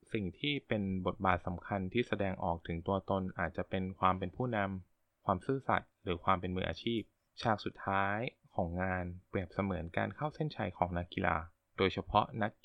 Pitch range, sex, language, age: 90-110 Hz, male, Thai, 20-39